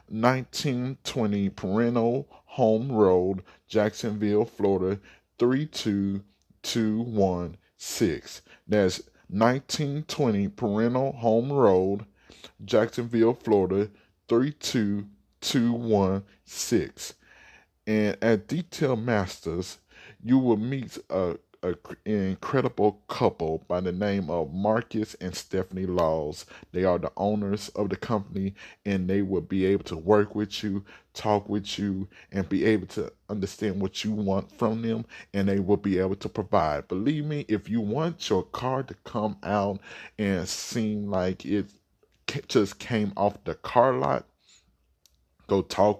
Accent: American